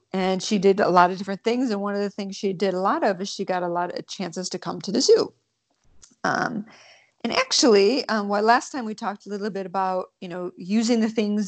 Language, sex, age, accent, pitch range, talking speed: English, female, 40-59, American, 180-225 Hz, 250 wpm